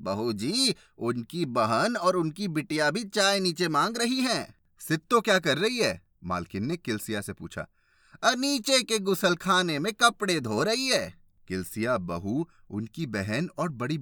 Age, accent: 30-49, native